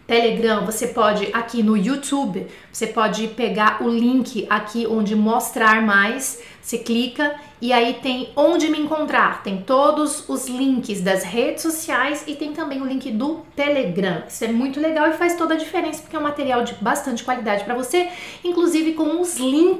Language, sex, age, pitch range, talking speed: French, female, 40-59, 215-275 Hz, 180 wpm